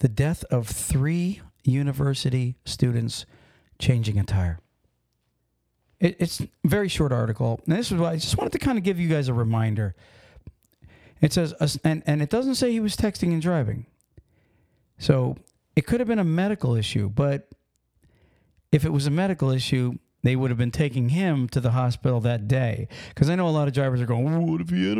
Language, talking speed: English, 190 wpm